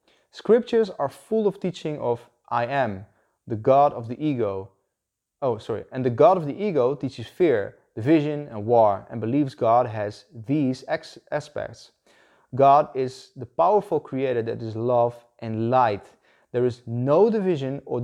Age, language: 20-39, Dutch